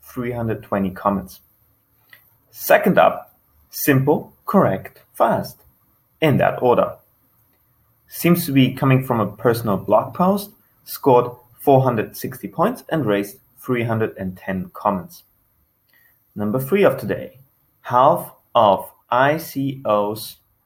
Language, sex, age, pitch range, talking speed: English, male, 30-49, 100-130 Hz, 95 wpm